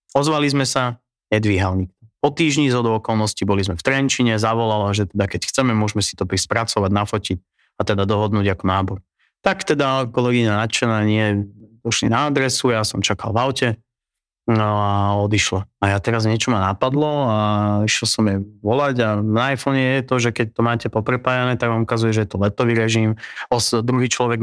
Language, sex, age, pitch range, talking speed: Slovak, male, 30-49, 105-125 Hz, 185 wpm